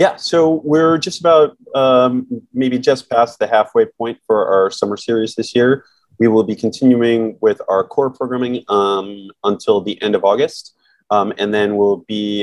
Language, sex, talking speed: English, male, 180 wpm